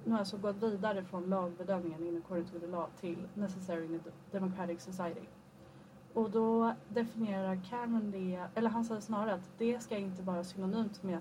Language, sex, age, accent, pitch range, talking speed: Swedish, female, 30-49, native, 175-215 Hz, 180 wpm